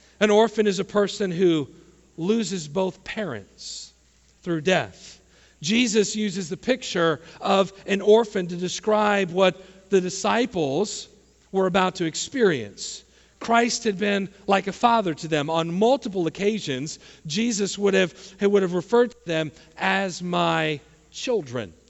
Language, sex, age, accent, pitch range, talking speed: English, male, 50-69, American, 170-220 Hz, 135 wpm